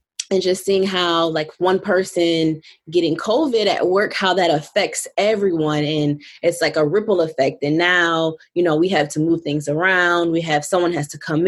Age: 20-39